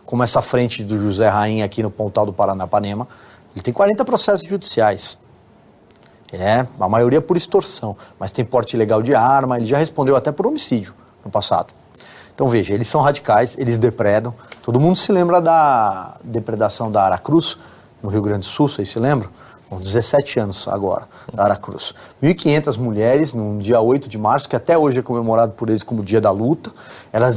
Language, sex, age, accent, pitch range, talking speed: Portuguese, male, 30-49, Brazilian, 105-135 Hz, 180 wpm